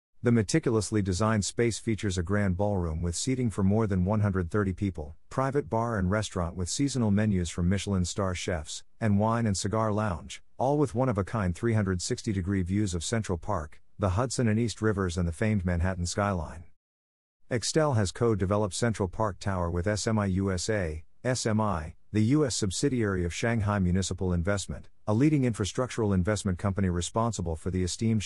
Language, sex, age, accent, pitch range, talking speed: English, male, 50-69, American, 90-115 Hz, 160 wpm